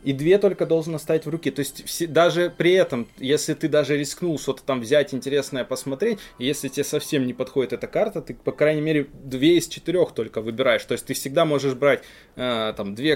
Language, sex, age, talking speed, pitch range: Russian, male, 20-39, 215 wpm, 135-175 Hz